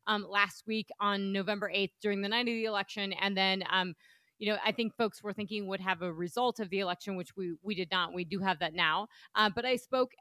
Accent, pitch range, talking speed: American, 190-220 Hz, 255 wpm